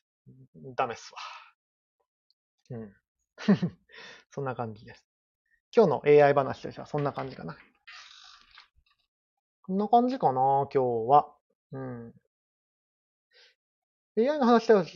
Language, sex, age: Japanese, male, 30-49